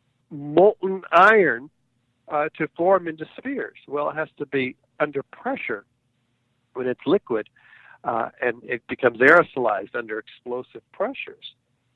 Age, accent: 60-79, American